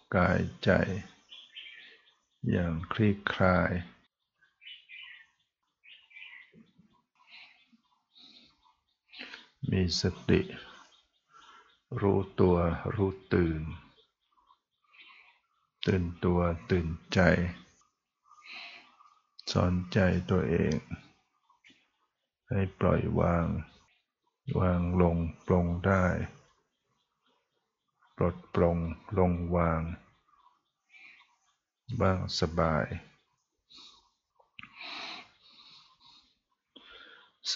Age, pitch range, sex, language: 60-79, 85-100 Hz, male, Thai